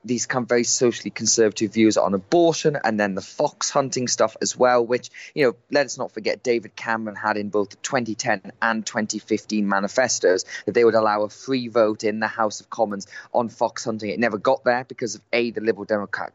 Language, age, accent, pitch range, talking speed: English, 20-39, British, 105-130 Hz, 215 wpm